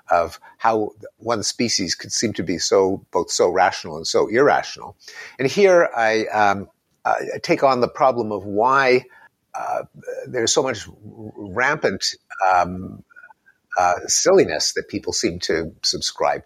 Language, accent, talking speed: English, American, 140 wpm